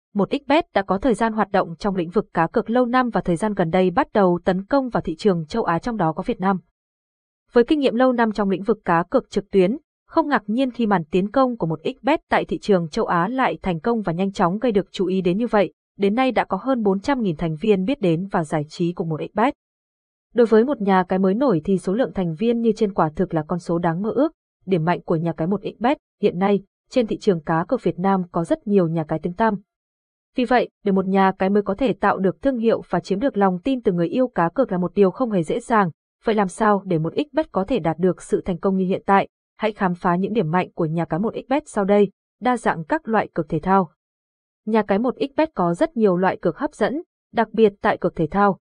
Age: 20-39